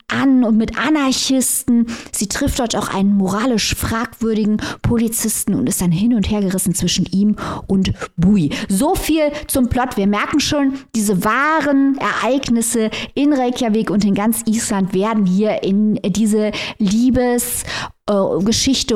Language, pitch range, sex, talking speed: German, 205-240 Hz, female, 140 wpm